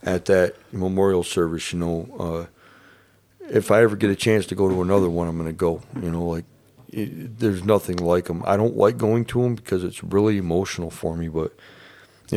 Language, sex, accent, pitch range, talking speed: English, male, American, 85-100 Hz, 210 wpm